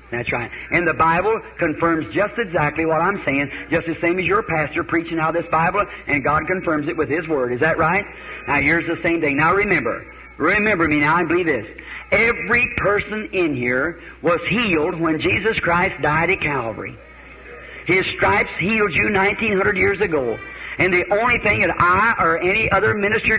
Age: 50-69